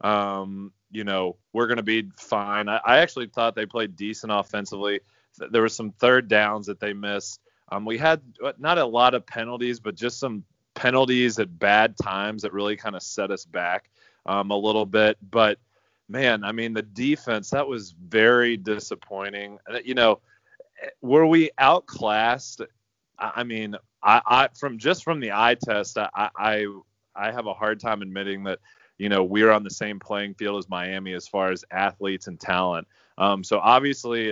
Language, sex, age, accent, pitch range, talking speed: English, male, 30-49, American, 100-120 Hz, 180 wpm